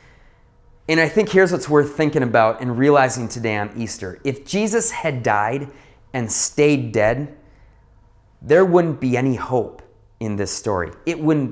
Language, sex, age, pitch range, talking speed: English, male, 30-49, 115-165 Hz, 155 wpm